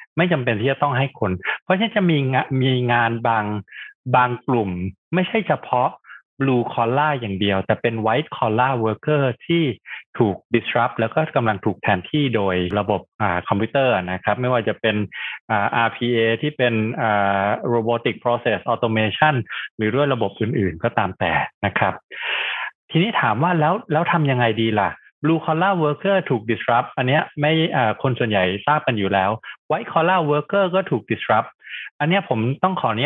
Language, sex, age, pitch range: Thai, male, 20-39, 110-150 Hz